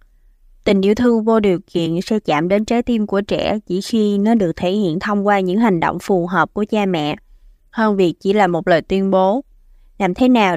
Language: Vietnamese